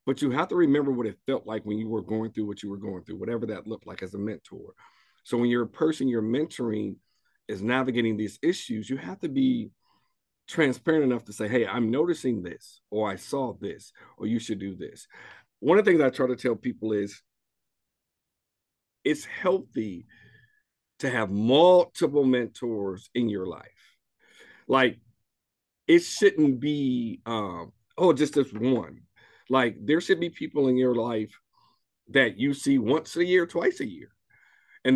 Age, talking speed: 50-69, 180 wpm